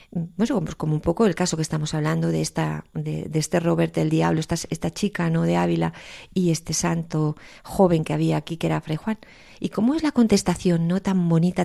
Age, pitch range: 40-59, 160-195 Hz